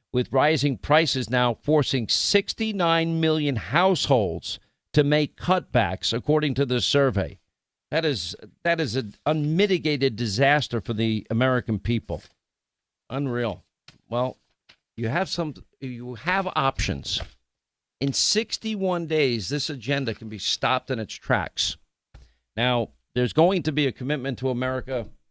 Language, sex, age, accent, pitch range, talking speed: English, male, 50-69, American, 120-150 Hz, 130 wpm